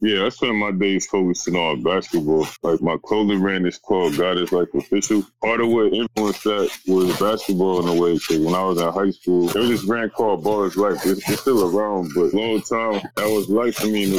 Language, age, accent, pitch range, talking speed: English, 20-39, American, 90-105 Hz, 245 wpm